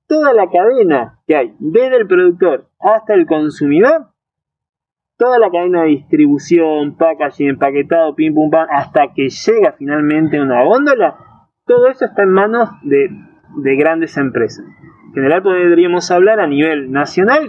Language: Spanish